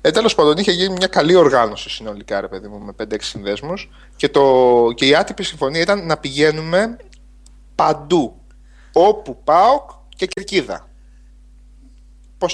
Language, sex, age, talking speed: Greek, male, 30-49, 145 wpm